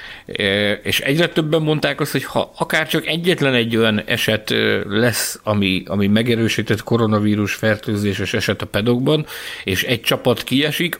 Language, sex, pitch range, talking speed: Hungarian, male, 105-135 Hz, 140 wpm